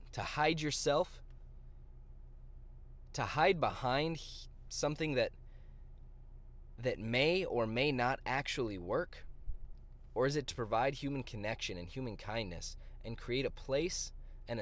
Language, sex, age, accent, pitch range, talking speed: English, male, 20-39, American, 95-135 Hz, 125 wpm